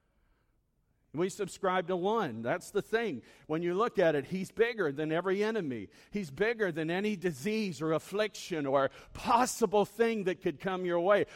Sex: male